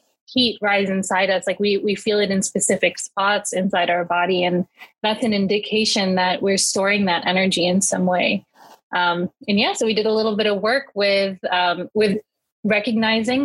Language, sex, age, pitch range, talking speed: English, female, 20-39, 195-225 Hz, 185 wpm